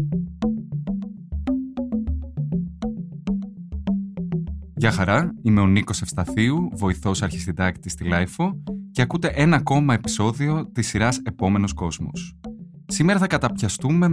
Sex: male